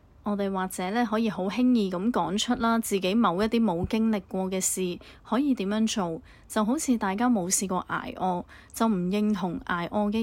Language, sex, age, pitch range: Chinese, female, 30-49, 185-225 Hz